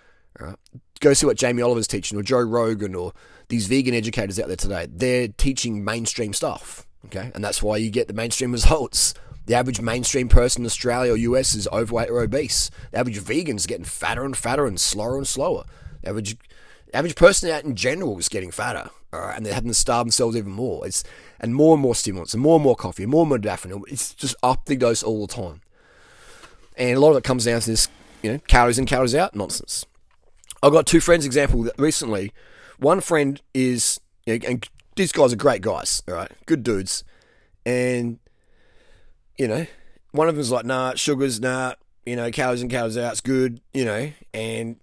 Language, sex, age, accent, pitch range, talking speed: English, male, 20-39, Australian, 110-135 Hz, 210 wpm